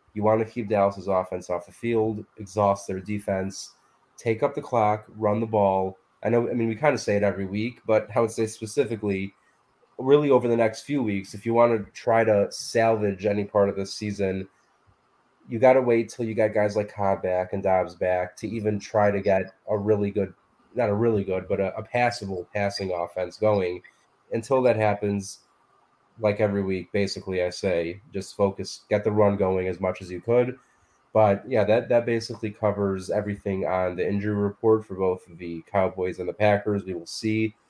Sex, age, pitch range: male, 20-39, 95-110 Hz